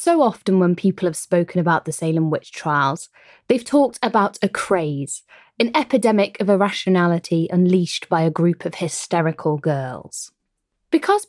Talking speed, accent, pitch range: 150 wpm, British, 160-235 Hz